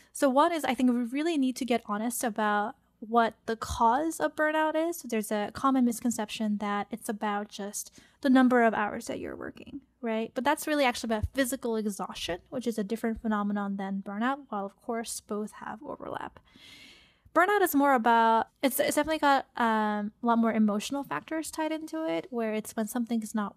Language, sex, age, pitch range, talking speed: English, female, 10-29, 215-270 Hz, 195 wpm